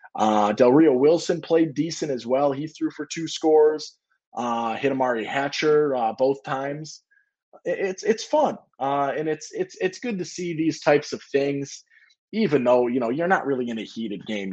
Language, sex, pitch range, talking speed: English, male, 115-160 Hz, 195 wpm